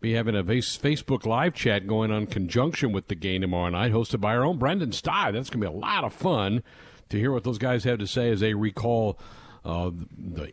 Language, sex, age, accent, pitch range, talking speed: English, male, 50-69, American, 95-125 Hz, 240 wpm